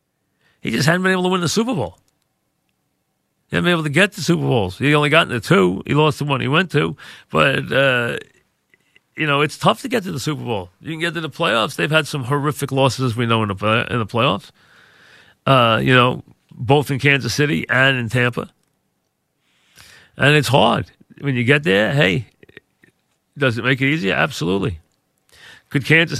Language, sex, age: English, male, 40-59